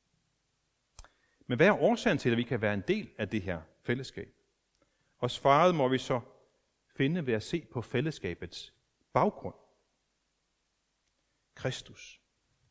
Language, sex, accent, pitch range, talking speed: Danish, male, native, 125-185 Hz, 130 wpm